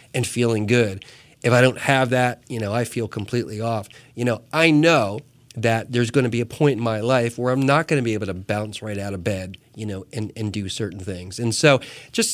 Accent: American